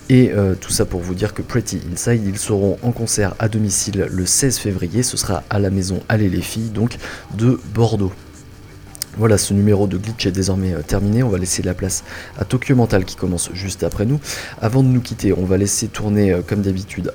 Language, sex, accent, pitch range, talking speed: French, male, French, 95-110 Hz, 220 wpm